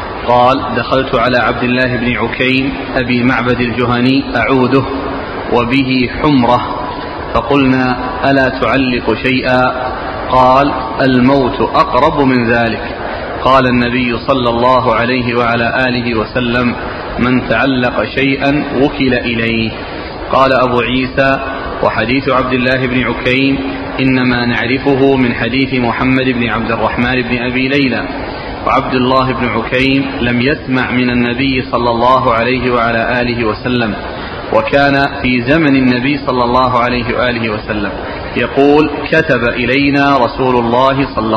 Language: Arabic